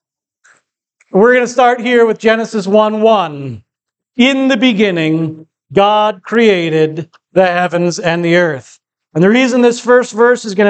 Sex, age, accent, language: male, 40-59, American, English